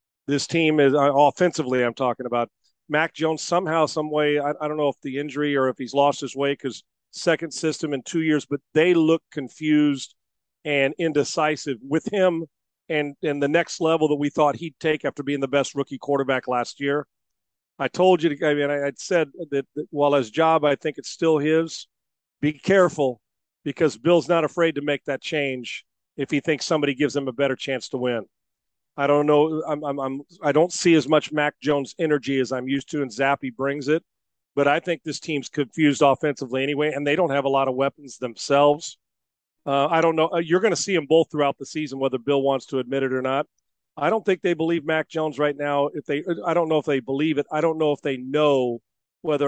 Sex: male